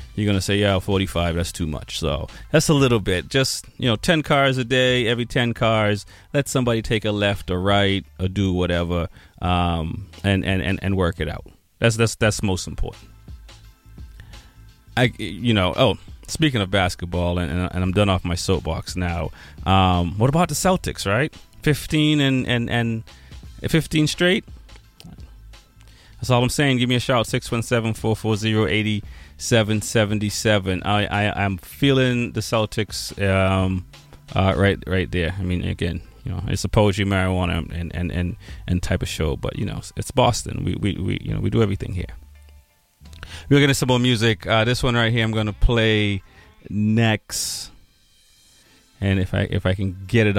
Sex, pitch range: male, 90-115 Hz